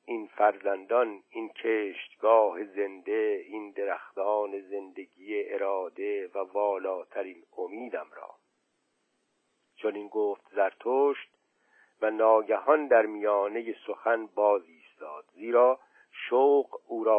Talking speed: 100 wpm